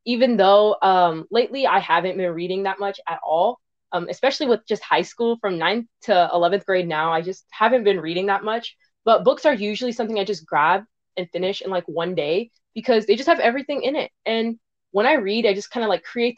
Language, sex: English, female